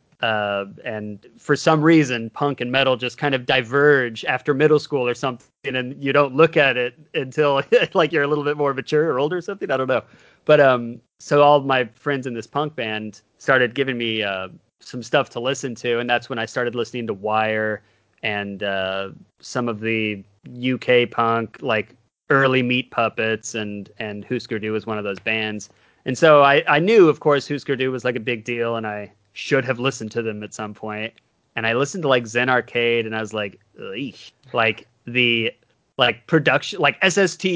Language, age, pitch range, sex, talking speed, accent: English, 30-49, 110-140 Hz, male, 205 wpm, American